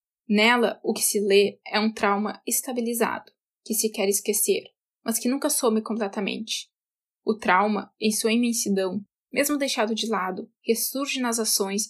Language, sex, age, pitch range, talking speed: Portuguese, female, 10-29, 210-245 Hz, 150 wpm